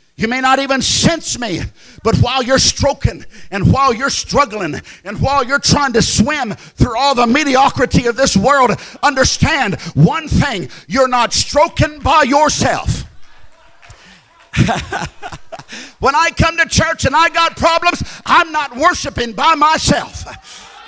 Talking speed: 140 wpm